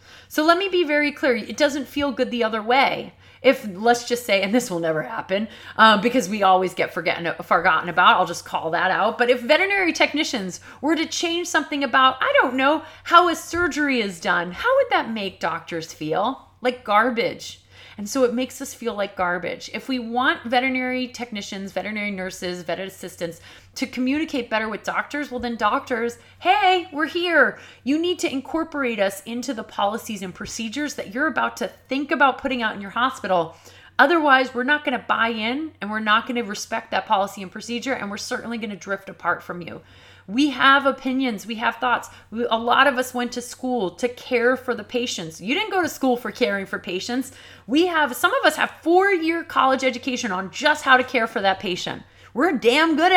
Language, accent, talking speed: English, American, 200 wpm